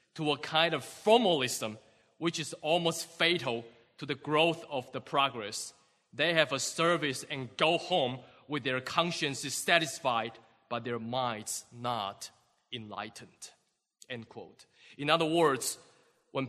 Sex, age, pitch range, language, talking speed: male, 20-39, 135-170 Hz, English, 125 wpm